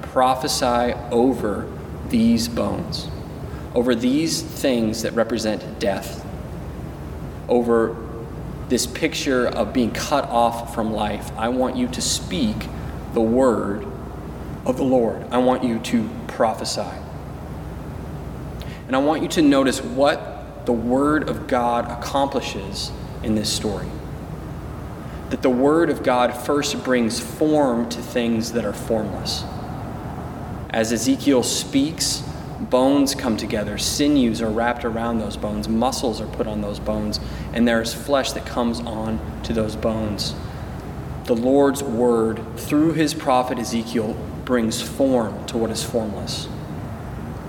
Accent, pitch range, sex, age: American, 110-135 Hz, male, 20-39